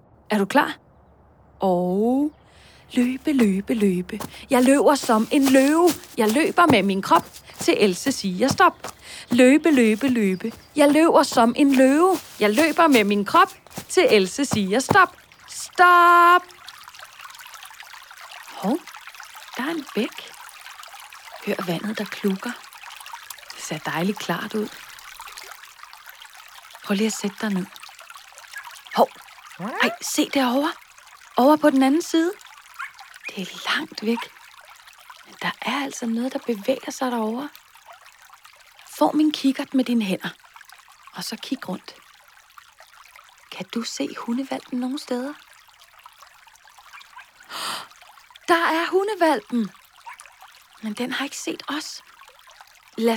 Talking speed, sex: 120 wpm, female